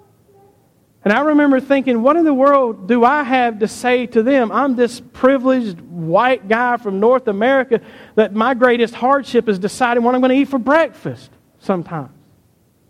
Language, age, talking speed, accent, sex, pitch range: English, 50-69, 170 wpm, American, male, 150-240 Hz